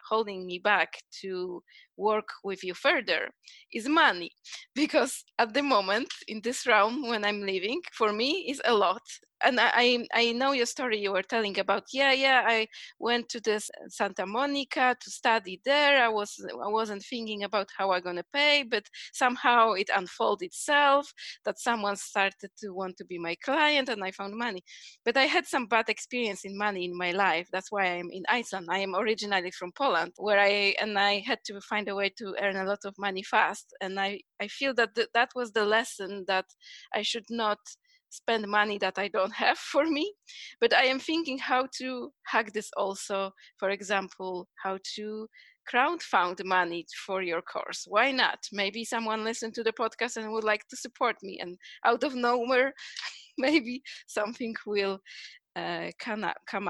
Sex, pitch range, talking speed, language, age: female, 195-250 Hz, 185 wpm, English, 20-39